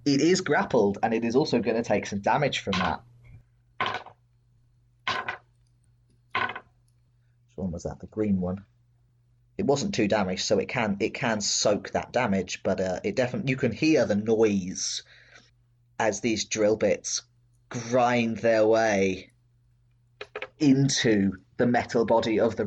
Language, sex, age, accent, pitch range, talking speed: English, male, 20-39, British, 110-125 Hz, 145 wpm